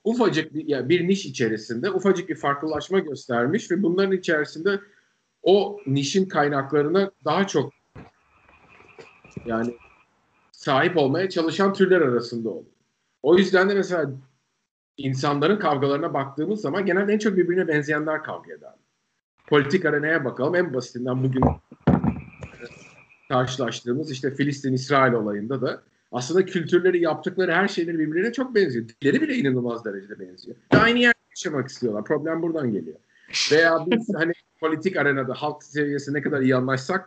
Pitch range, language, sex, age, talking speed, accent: 130-185 Hz, Turkish, male, 50-69, 135 wpm, native